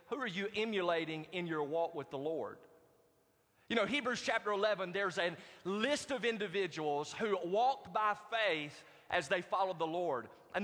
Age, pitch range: 30-49, 175-220 Hz